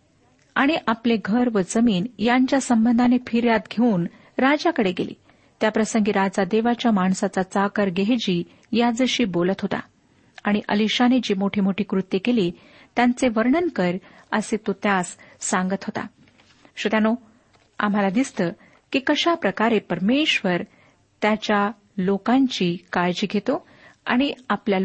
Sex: female